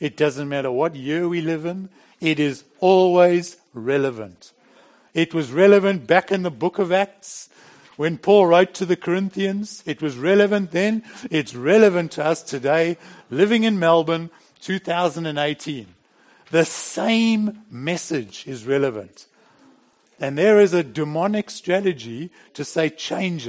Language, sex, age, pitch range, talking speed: English, male, 60-79, 145-205 Hz, 140 wpm